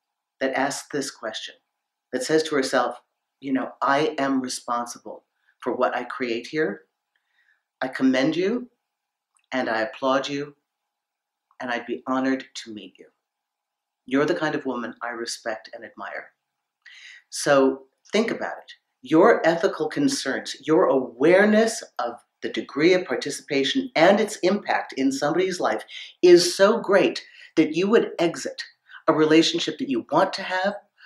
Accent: American